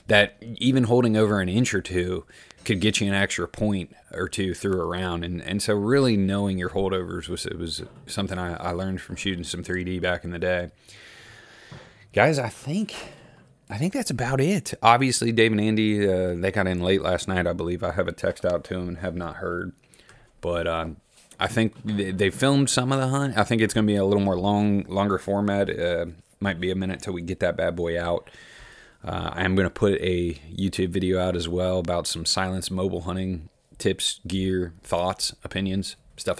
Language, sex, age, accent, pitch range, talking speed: English, male, 30-49, American, 90-110 Hz, 210 wpm